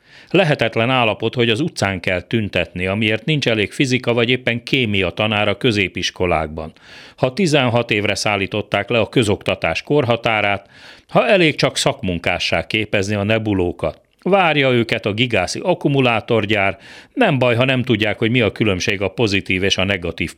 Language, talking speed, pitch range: Hungarian, 150 wpm, 95-135 Hz